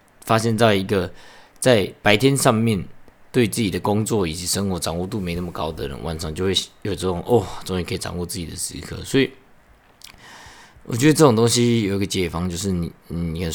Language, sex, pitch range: Chinese, male, 90-115 Hz